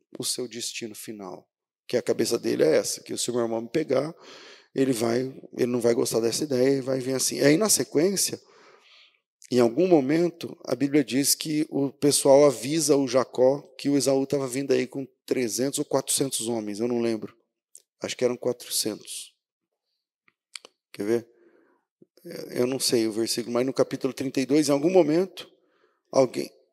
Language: Portuguese